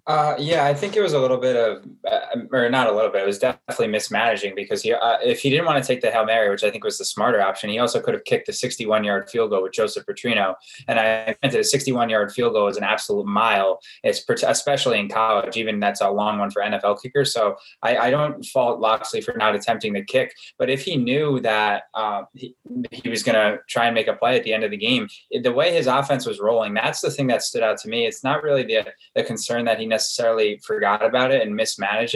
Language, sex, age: English, male, 20-39